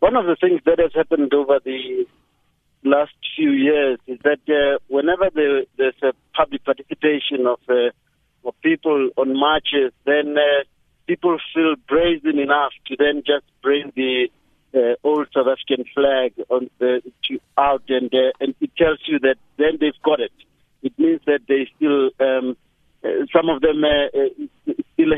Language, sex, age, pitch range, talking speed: English, male, 50-69, 135-165 Hz, 170 wpm